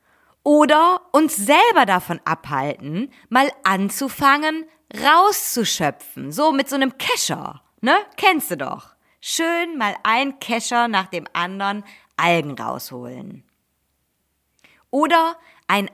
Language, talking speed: German, 105 wpm